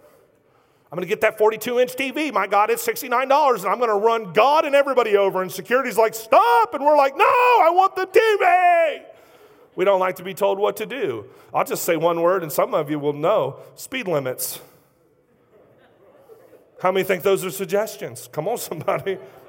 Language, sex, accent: English, male, American